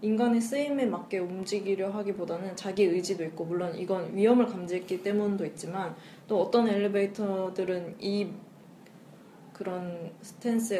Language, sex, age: Korean, female, 20-39